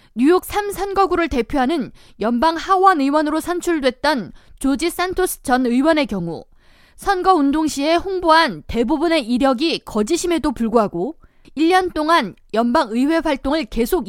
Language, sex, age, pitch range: Korean, female, 20-39, 255-345 Hz